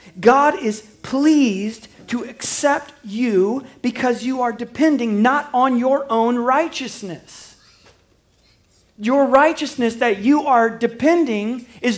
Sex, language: male, English